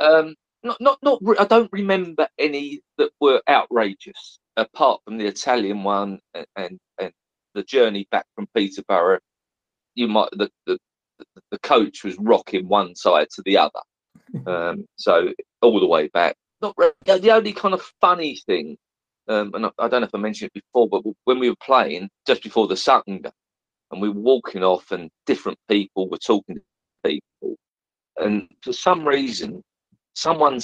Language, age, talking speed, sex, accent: English, 40-59, 170 wpm, male, British